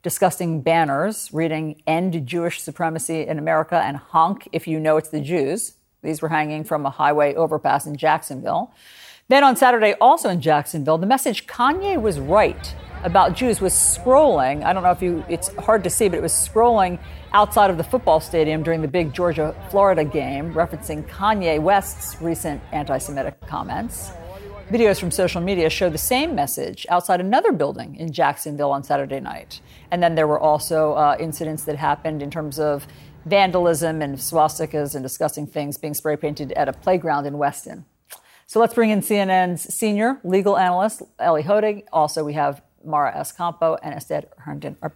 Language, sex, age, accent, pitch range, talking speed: English, female, 50-69, American, 150-185 Hz, 175 wpm